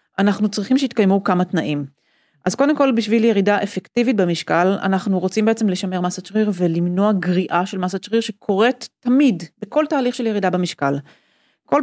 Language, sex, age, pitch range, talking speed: Hebrew, female, 30-49, 180-235 Hz, 155 wpm